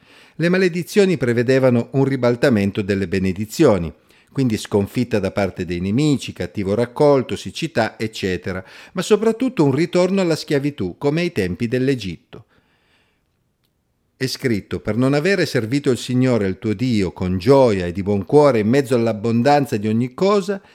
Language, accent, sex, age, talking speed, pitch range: Italian, native, male, 50-69, 145 wpm, 100-140 Hz